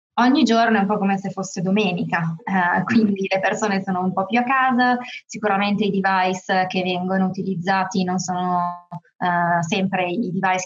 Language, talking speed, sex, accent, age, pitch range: Italian, 175 wpm, female, native, 20-39, 175-190 Hz